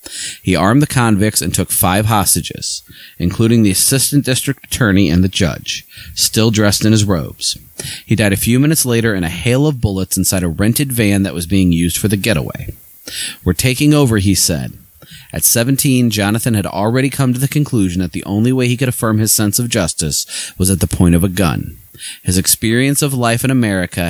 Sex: male